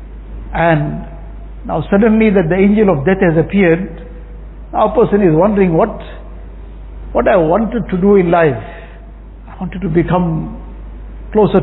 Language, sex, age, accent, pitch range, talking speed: English, male, 60-79, Indian, 165-195 Hz, 145 wpm